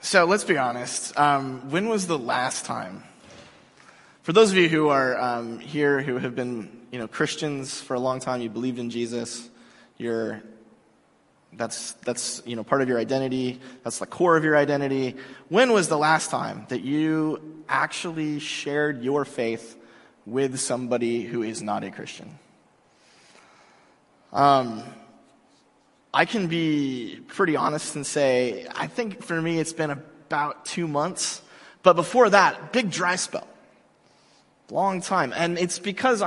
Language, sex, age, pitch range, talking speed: English, male, 20-39, 125-165 Hz, 155 wpm